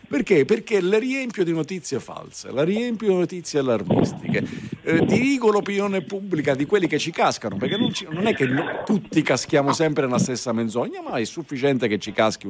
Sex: male